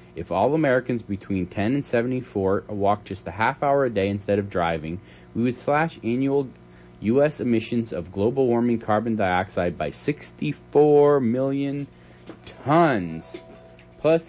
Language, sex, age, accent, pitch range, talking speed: English, male, 30-49, American, 85-125 Hz, 140 wpm